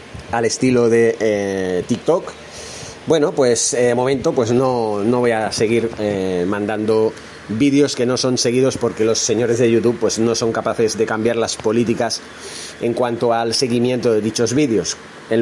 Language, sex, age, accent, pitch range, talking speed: Spanish, male, 30-49, Spanish, 115-130 Hz, 170 wpm